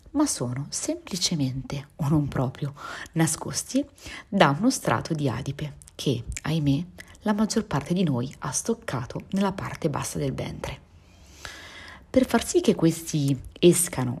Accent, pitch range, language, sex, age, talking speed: native, 130-175 Hz, Italian, female, 30-49, 135 wpm